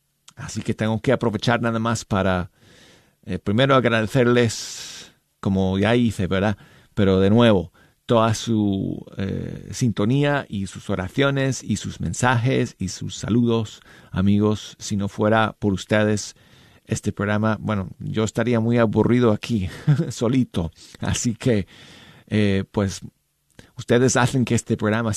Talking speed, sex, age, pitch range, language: 135 wpm, male, 40-59, 105-130 Hz, Spanish